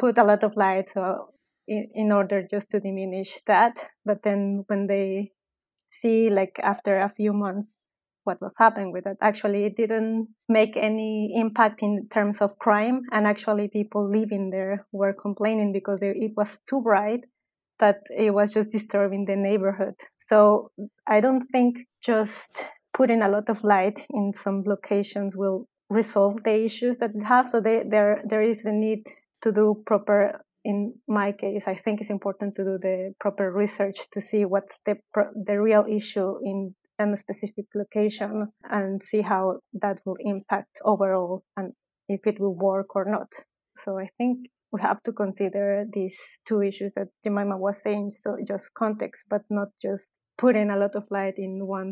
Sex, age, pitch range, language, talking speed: female, 20-39, 200-215 Hz, English, 175 wpm